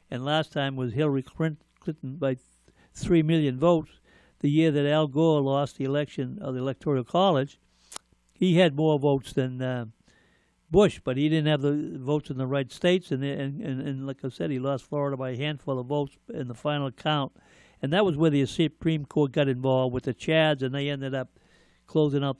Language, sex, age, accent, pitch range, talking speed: English, male, 60-79, American, 125-145 Hz, 205 wpm